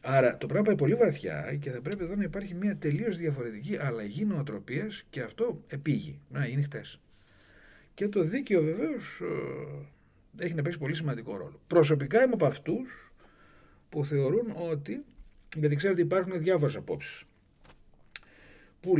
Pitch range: 120-185 Hz